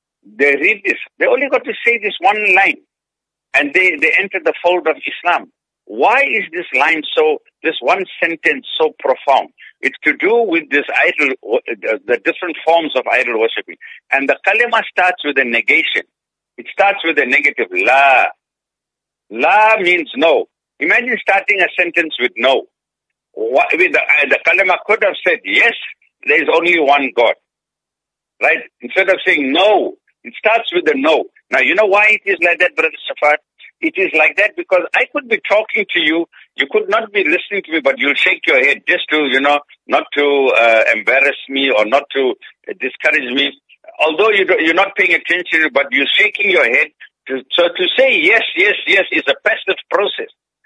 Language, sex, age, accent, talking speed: English, male, 60-79, Indian, 180 wpm